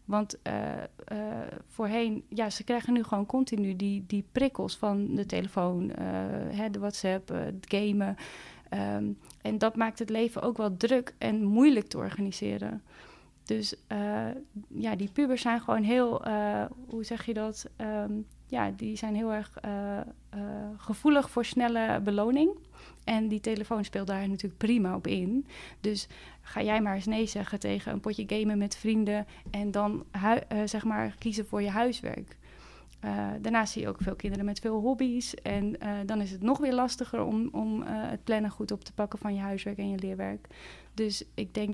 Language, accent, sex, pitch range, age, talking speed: Dutch, Dutch, female, 200-225 Hz, 30-49, 180 wpm